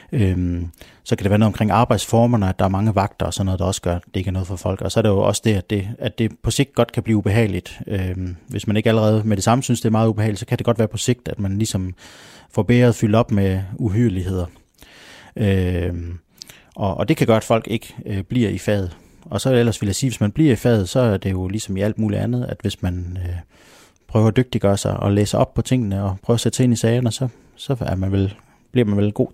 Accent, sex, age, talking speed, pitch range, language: native, male, 30-49, 260 wpm, 100-120 Hz, Danish